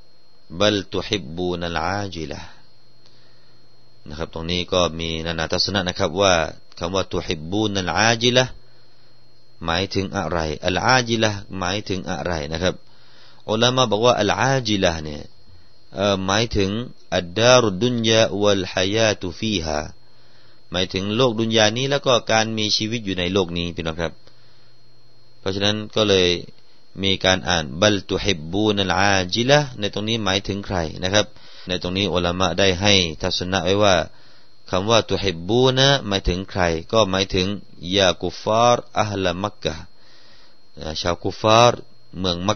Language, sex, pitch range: Thai, male, 90-110 Hz